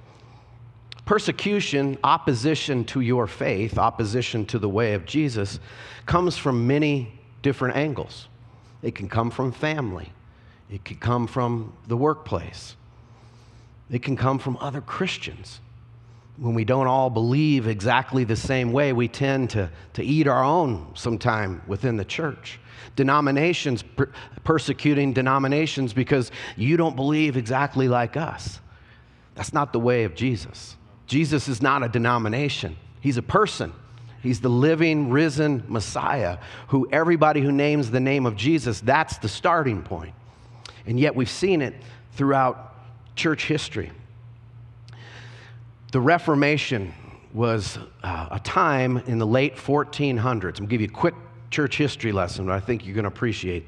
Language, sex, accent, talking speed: English, male, American, 145 wpm